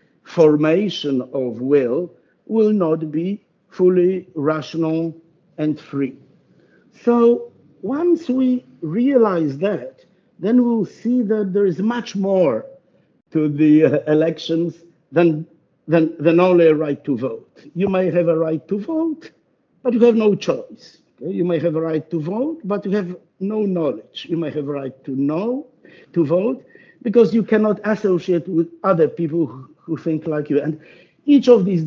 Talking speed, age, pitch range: 160 wpm, 60-79, 155-205 Hz